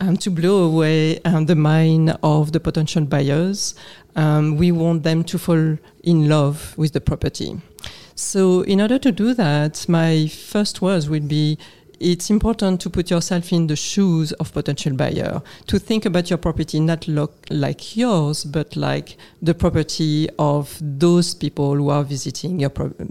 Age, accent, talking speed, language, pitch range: 40-59, French, 165 wpm, English, 155-185 Hz